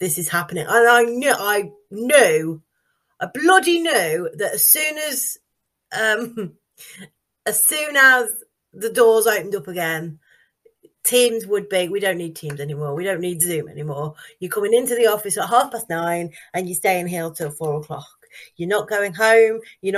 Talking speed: 175 wpm